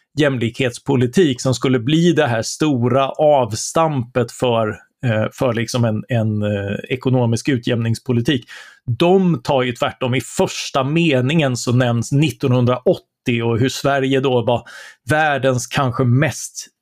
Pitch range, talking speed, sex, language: 120-145 Hz, 120 wpm, male, Swedish